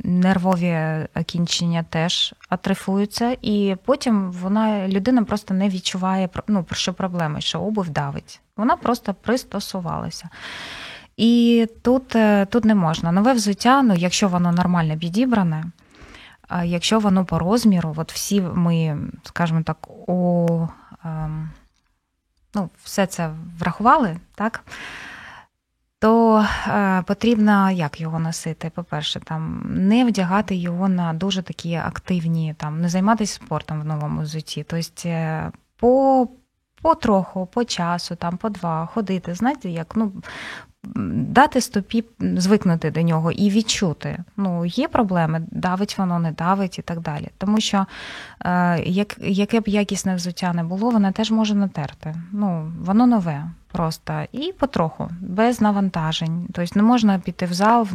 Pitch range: 170-210 Hz